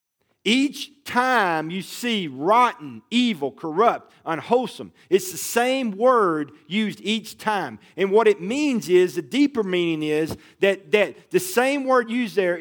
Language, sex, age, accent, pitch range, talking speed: English, male, 50-69, American, 140-220 Hz, 150 wpm